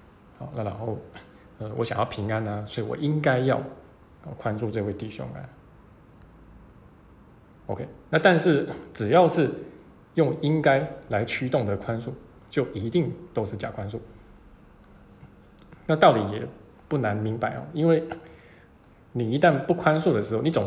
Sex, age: male, 20-39